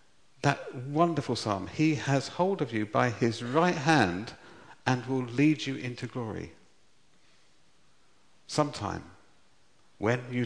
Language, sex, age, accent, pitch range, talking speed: English, male, 50-69, British, 100-140 Hz, 120 wpm